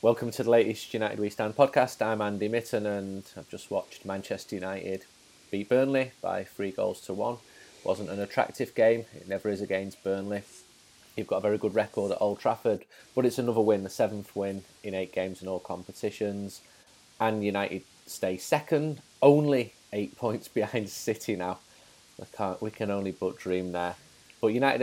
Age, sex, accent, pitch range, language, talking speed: 30-49, male, British, 95-115 Hz, English, 185 wpm